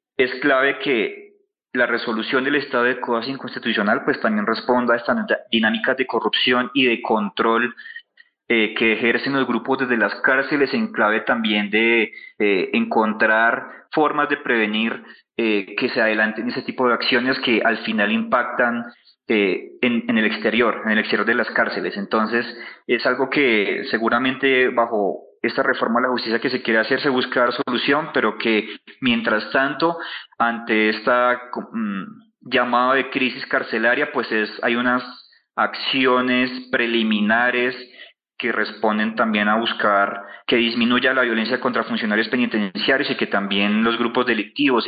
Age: 30-49